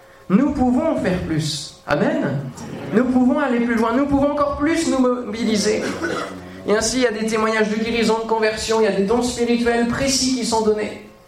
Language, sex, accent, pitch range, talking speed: French, male, French, 175-250 Hz, 195 wpm